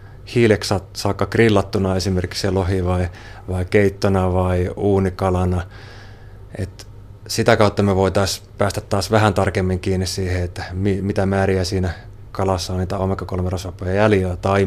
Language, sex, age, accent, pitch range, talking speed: Finnish, male, 30-49, native, 95-100 Hz, 125 wpm